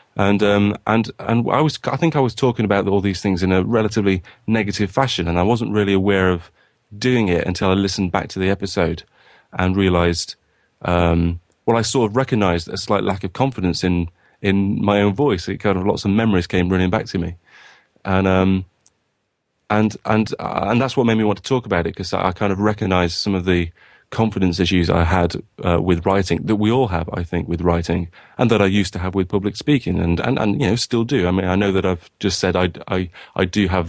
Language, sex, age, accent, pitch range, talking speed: English, male, 30-49, British, 90-110 Hz, 235 wpm